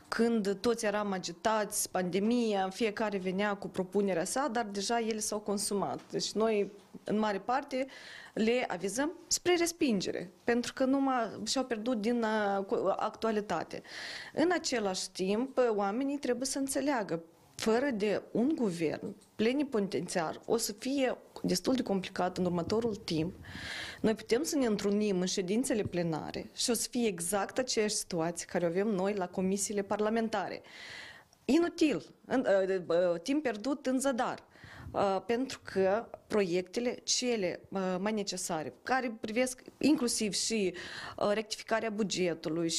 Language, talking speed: Romanian, 130 wpm